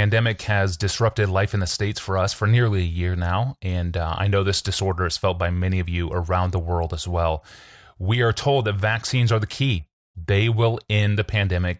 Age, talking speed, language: 30-49, 225 wpm, English